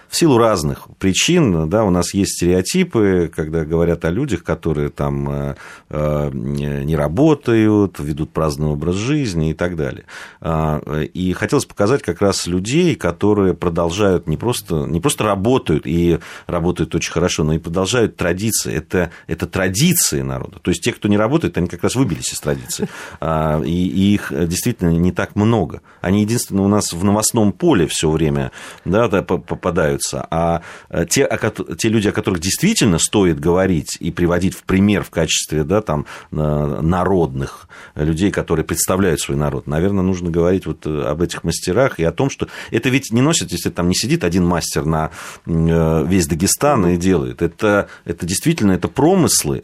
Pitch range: 80-100 Hz